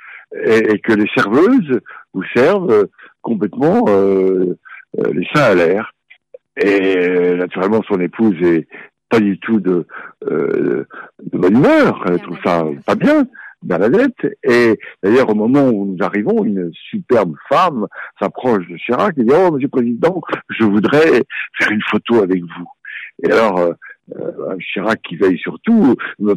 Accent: French